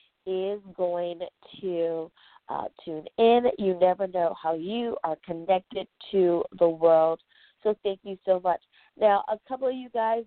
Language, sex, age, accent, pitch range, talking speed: English, female, 30-49, American, 175-220 Hz, 160 wpm